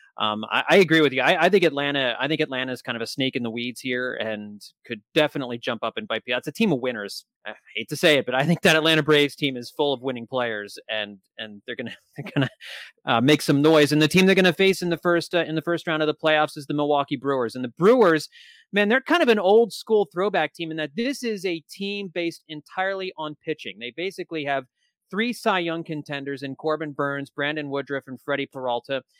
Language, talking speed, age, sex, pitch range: English, 250 wpm, 30-49, male, 130-180 Hz